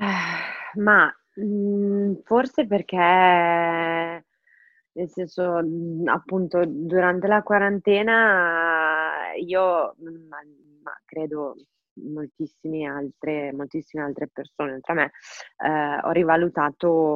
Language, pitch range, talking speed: Italian, 155-190 Hz, 80 wpm